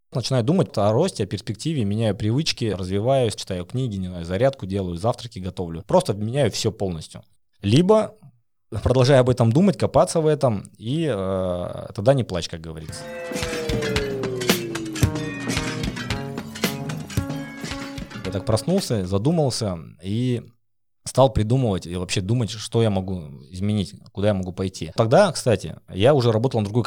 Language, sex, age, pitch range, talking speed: Russian, male, 20-39, 95-125 Hz, 130 wpm